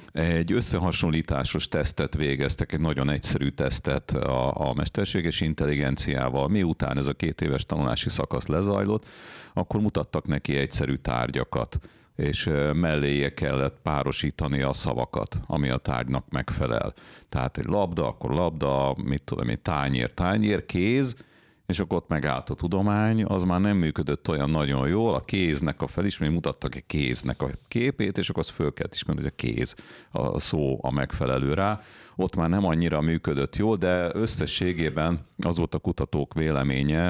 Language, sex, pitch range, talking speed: Hungarian, male, 70-90 Hz, 155 wpm